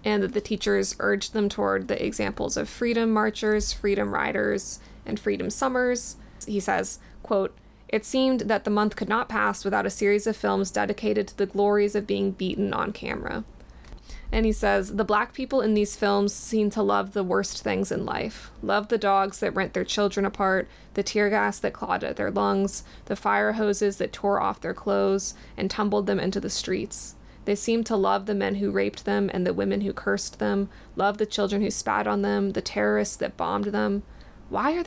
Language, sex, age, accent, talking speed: English, female, 20-39, American, 205 wpm